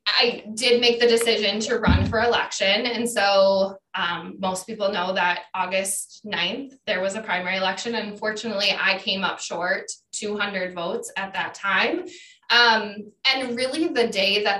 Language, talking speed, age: English, 160 wpm, 20-39